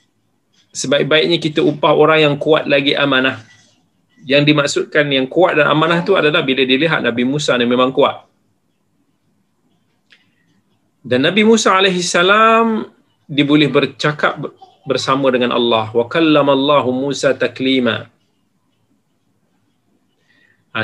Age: 30-49